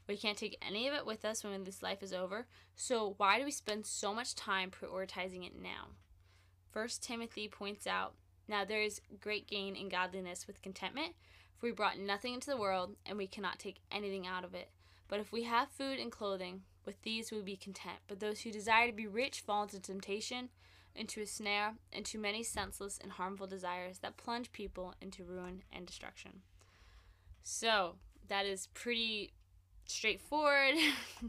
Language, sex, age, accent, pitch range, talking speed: English, female, 10-29, American, 180-215 Hz, 185 wpm